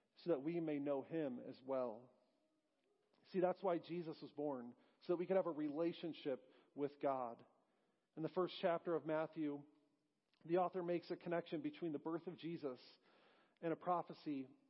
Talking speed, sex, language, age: 165 wpm, male, English, 40-59